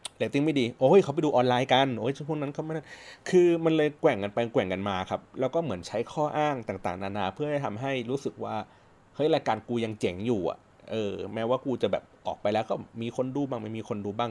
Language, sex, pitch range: Thai, male, 100-130 Hz